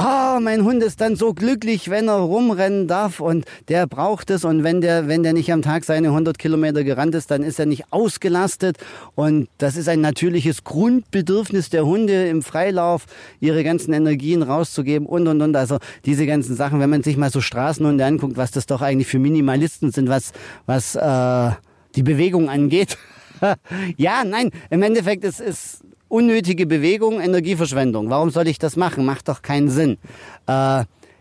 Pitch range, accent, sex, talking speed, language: 140-180 Hz, German, male, 180 wpm, German